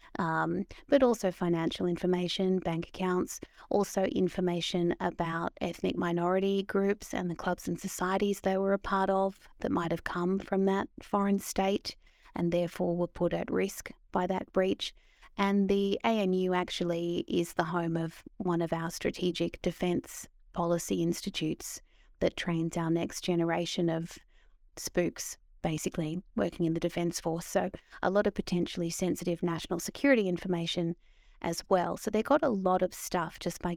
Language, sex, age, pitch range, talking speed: English, female, 30-49, 170-195 Hz, 155 wpm